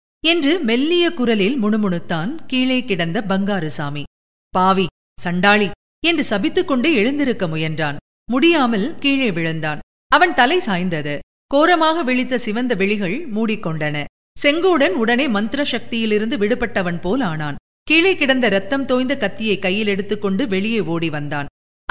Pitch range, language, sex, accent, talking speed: 185-265 Hz, Tamil, female, native, 110 wpm